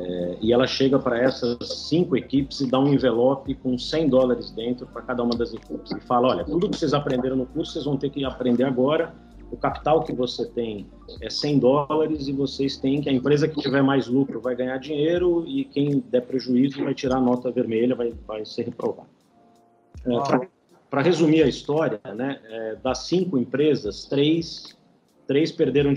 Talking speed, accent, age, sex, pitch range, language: 190 wpm, Brazilian, 40-59, male, 125-145 Hz, Portuguese